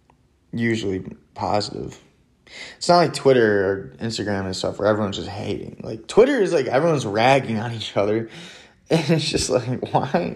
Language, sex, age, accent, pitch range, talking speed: English, male, 20-39, American, 110-150 Hz, 160 wpm